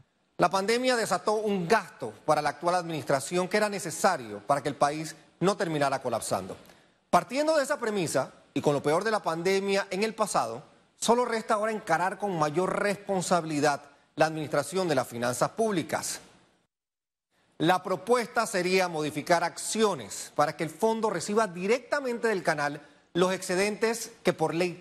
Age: 30-49